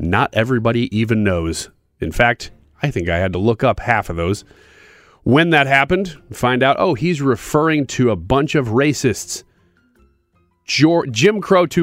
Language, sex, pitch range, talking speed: English, male, 100-145 Hz, 155 wpm